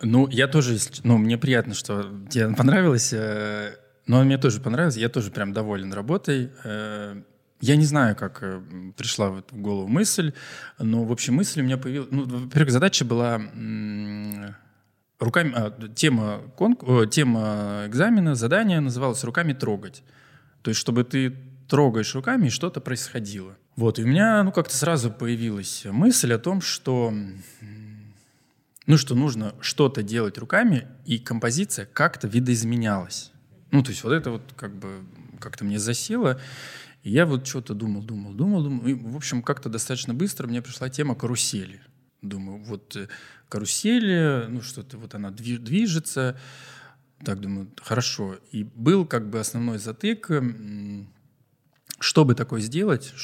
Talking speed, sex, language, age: 150 wpm, male, Russian, 20-39